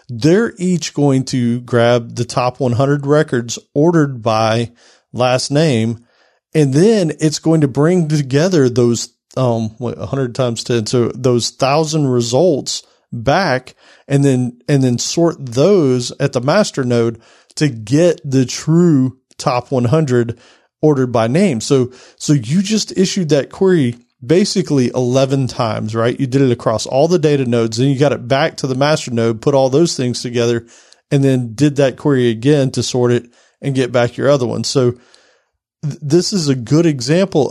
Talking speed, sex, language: 165 wpm, male, English